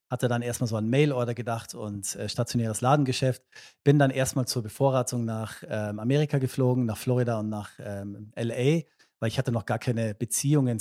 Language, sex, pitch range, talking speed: German, male, 115-130 Hz, 185 wpm